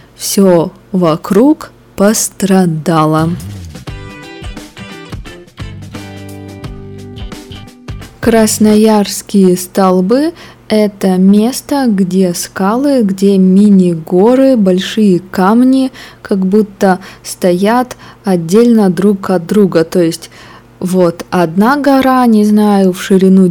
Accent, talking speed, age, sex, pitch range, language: native, 75 wpm, 20-39, female, 170-205 Hz, Russian